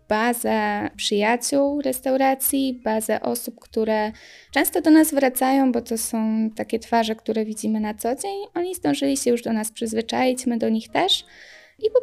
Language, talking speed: Polish, 165 wpm